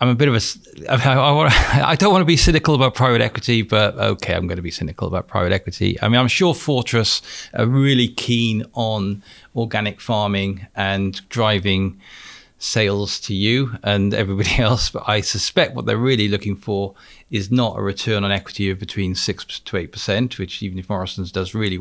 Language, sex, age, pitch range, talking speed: English, male, 40-59, 95-115 Hz, 195 wpm